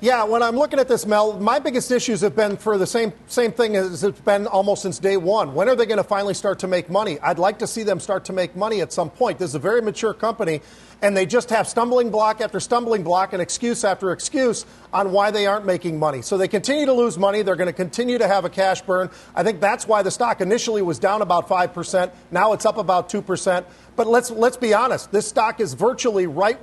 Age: 40-59